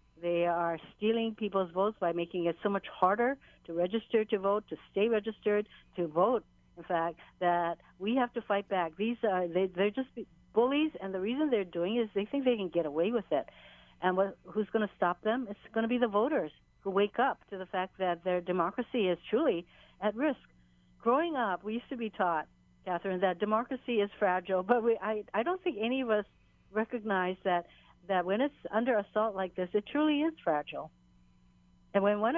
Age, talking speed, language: 60-79, 210 wpm, English